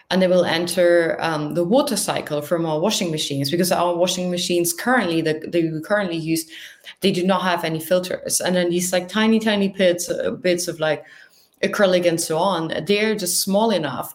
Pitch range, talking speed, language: 150-180 Hz, 200 wpm, English